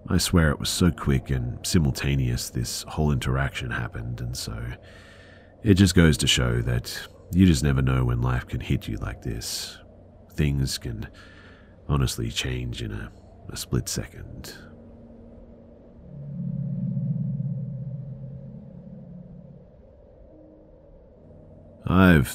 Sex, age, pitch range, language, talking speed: male, 40-59, 70-110 Hz, English, 110 wpm